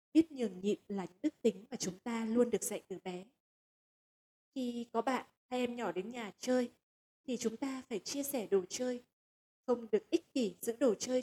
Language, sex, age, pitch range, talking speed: Vietnamese, female, 20-39, 210-265 Hz, 210 wpm